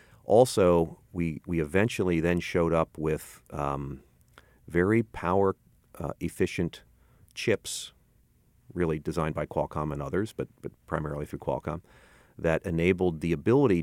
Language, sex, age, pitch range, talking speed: English, male, 40-59, 75-90 Hz, 120 wpm